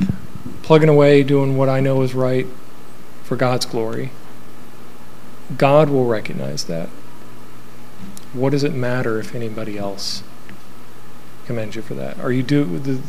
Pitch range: 110-145 Hz